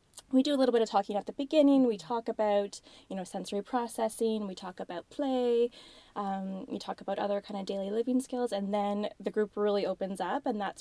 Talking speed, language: 220 wpm, English